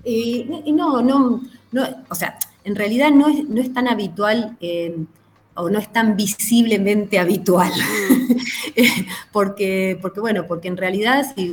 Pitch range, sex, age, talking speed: 165-210 Hz, female, 20-39, 150 wpm